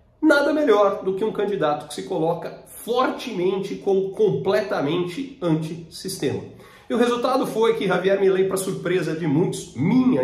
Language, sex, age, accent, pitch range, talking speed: Portuguese, male, 40-59, Brazilian, 150-220 Hz, 145 wpm